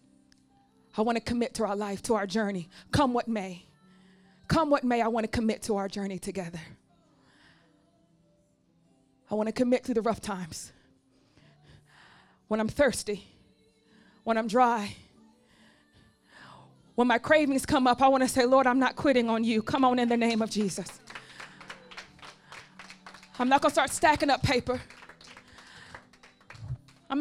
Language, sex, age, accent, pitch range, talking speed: English, female, 20-39, American, 220-300 Hz, 150 wpm